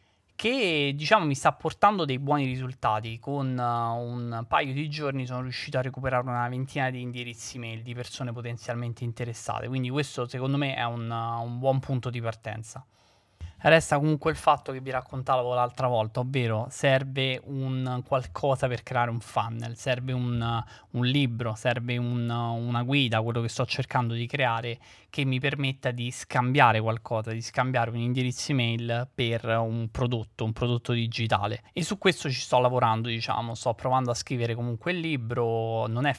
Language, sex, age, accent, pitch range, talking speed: Italian, male, 20-39, native, 115-130 Hz, 165 wpm